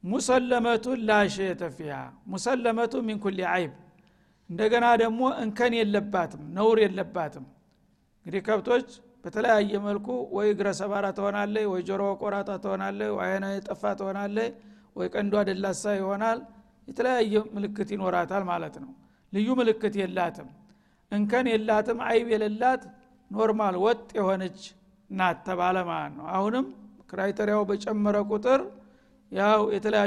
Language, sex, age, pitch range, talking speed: Amharic, male, 60-79, 195-225 Hz, 110 wpm